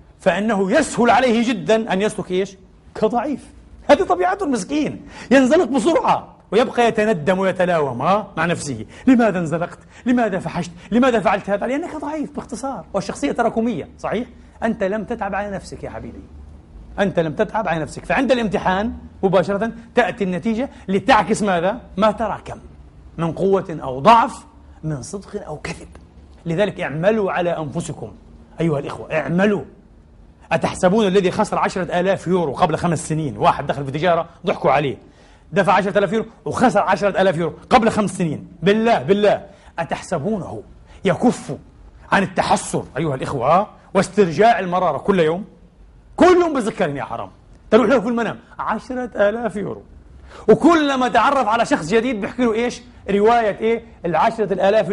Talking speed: 140 wpm